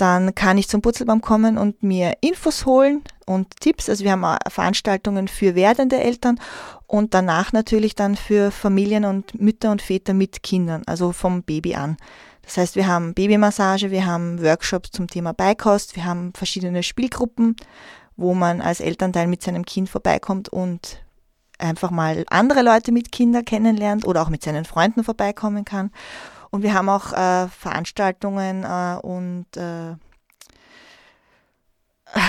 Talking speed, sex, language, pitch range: 150 wpm, female, German, 170-210 Hz